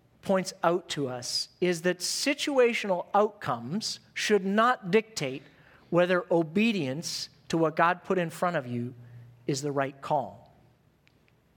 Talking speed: 130 wpm